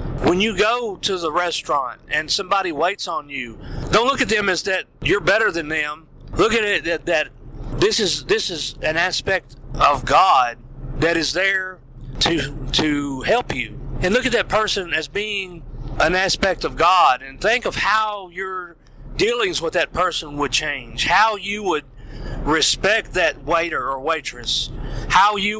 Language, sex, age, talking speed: English, male, 40-59, 170 wpm